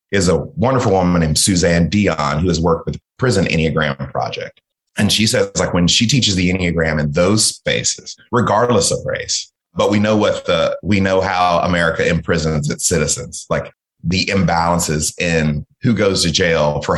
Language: English